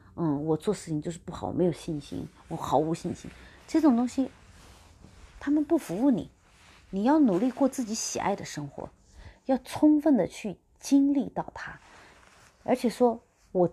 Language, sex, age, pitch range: Chinese, female, 30-49, 150-225 Hz